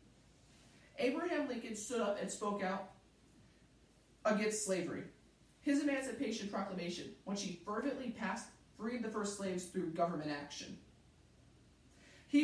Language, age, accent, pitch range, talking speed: English, 30-49, American, 180-240 Hz, 115 wpm